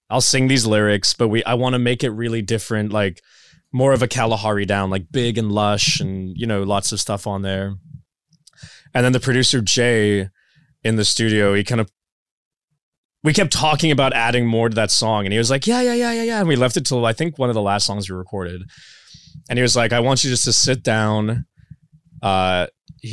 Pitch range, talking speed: 100-125 Hz, 225 wpm